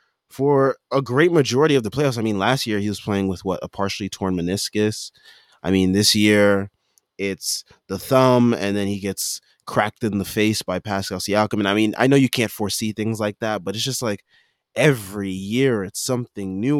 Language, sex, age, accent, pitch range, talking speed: English, male, 20-39, American, 95-115 Hz, 205 wpm